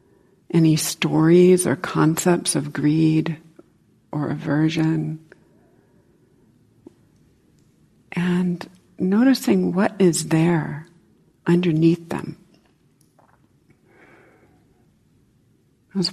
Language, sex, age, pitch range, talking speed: English, female, 60-79, 160-180 Hz, 60 wpm